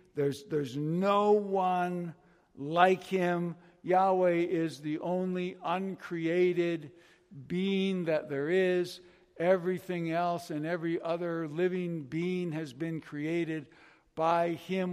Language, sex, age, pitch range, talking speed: English, male, 60-79, 145-185 Hz, 110 wpm